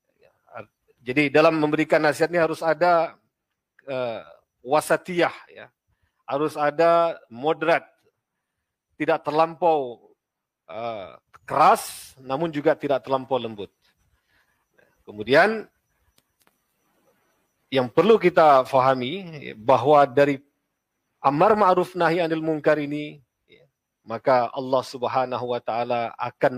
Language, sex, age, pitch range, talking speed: Malay, male, 40-59, 130-160 Hz, 95 wpm